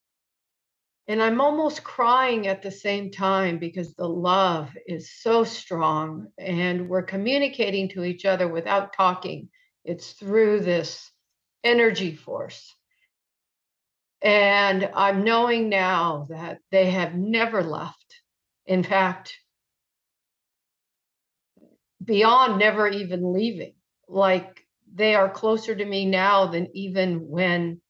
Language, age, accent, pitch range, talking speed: English, 50-69, American, 180-220 Hz, 110 wpm